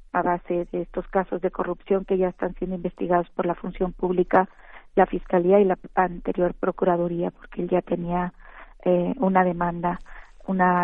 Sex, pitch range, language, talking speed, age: female, 180-205 Hz, Spanish, 165 wpm, 40-59